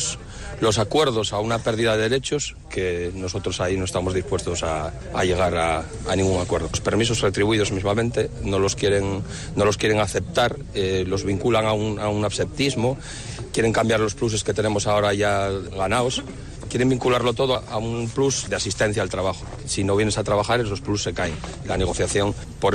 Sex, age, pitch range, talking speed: male, 60-79, 110-170 Hz, 180 wpm